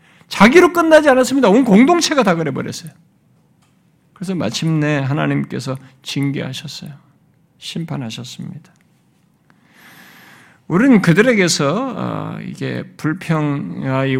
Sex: male